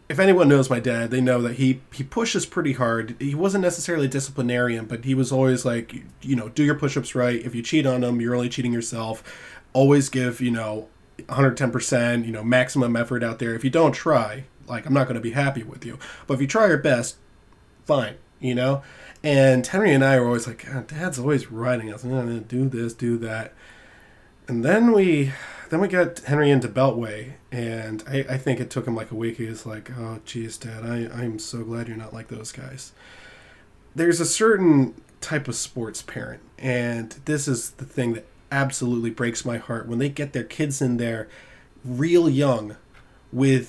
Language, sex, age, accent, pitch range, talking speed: English, male, 20-39, American, 115-135 Hz, 205 wpm